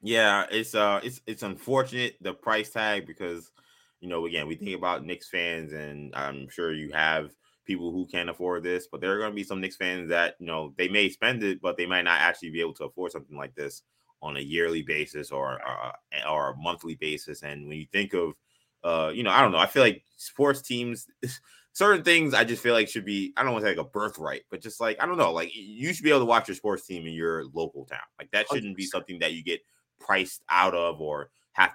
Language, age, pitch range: English, 20-39, 80-110 Hz